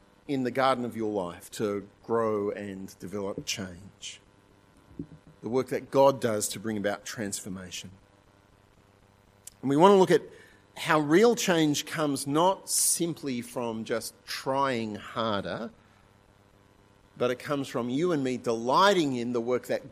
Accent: Australian